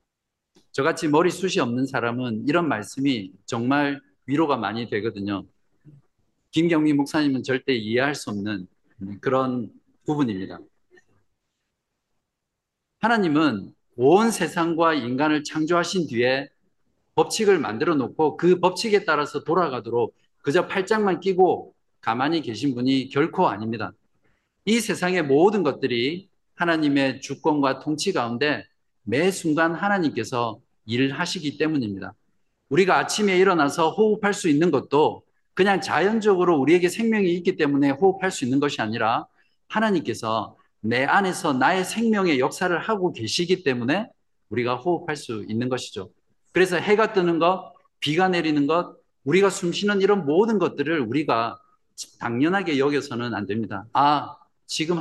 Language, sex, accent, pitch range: Korean, male, native, 125-185 Hz